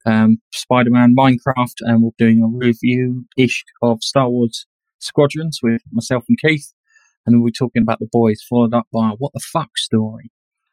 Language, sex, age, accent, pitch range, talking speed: English, male, 20-39, British, 115-145 Hz, 180 wpm